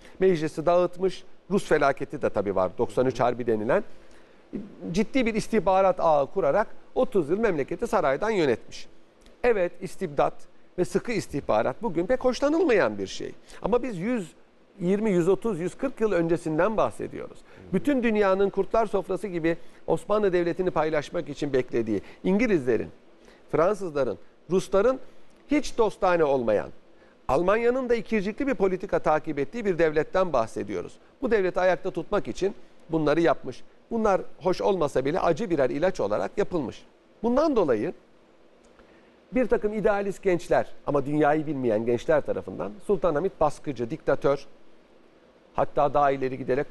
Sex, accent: male, native